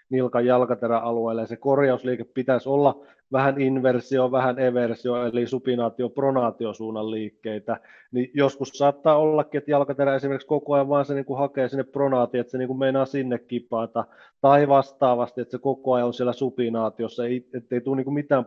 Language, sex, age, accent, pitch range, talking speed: Finnish, male, 20-39, native, 120-135 Hz, 155 wpm